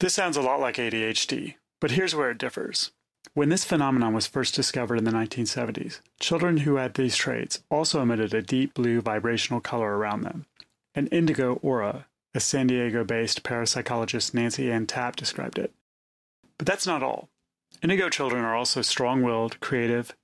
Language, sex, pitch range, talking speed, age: English, male, 110-135 Hz, 170 wpm, 30-49